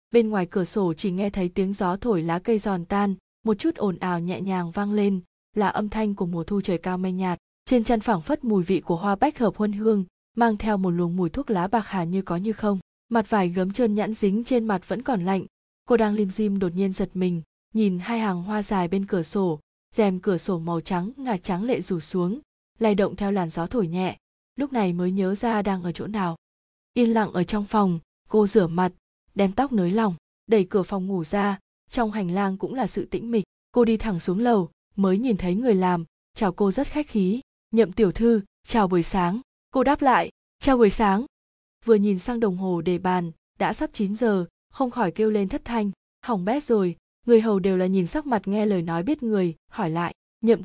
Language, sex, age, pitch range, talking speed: Vietnamese, female, 20-39, 185-225 Hz, 235 wpm